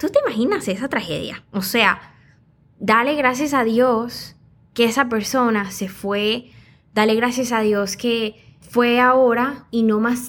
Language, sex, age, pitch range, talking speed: English, female, 10-29, 220-265 Hz, 150 wpm